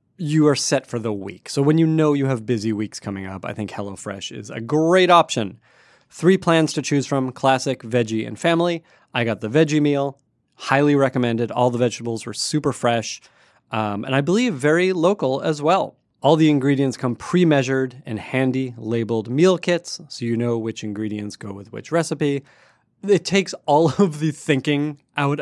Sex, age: male, 30-49